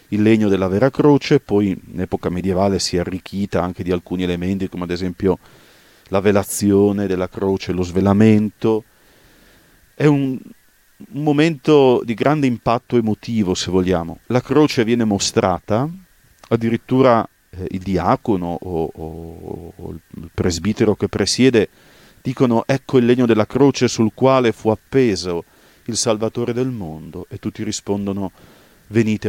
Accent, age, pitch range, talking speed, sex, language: native, 40-59, 95-120 Hz, 140 wpm, male, Italian